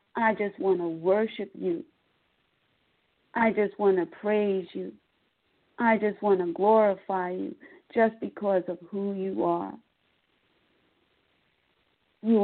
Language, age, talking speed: English, 50-69, 120 wpm